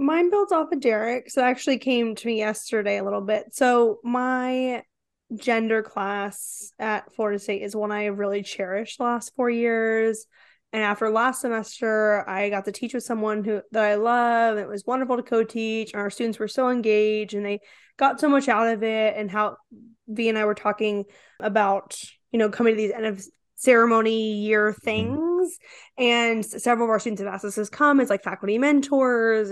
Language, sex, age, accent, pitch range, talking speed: English, female, 10-29, American, 210-245 Hz, 195 wpm